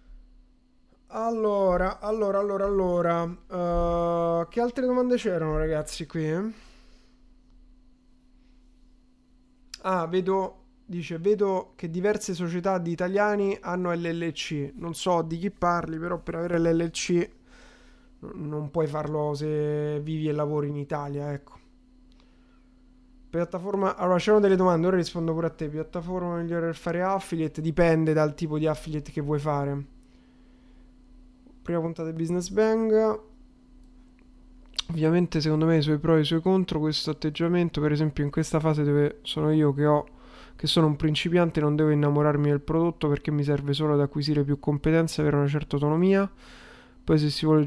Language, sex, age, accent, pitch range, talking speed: Italian, male, 20-39, native, 155-195 Hz, 150 wpm